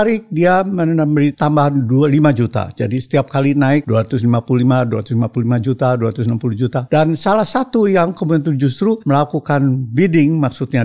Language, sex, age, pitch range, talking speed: Indonesian, male, 50-69, 125-200 Hz, 120 wpm